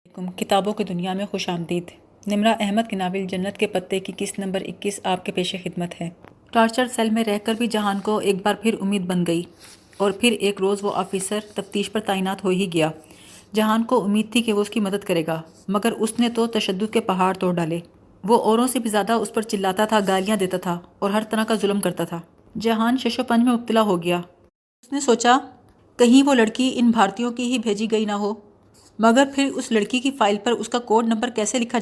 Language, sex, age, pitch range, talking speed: Urdu, female, 30-49, 195-235 Hz, 230 wpm